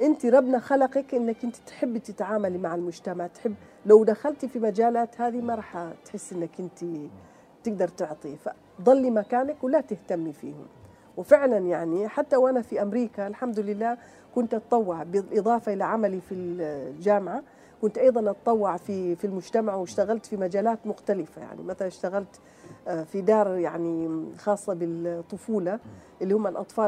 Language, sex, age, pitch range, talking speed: Arabic, female, 40-59, 175-225 Hz, 140 wpm